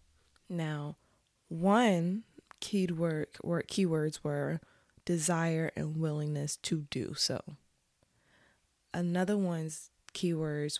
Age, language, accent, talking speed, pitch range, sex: 20-39, English, American, 90 wpm, 160-205 Hz, female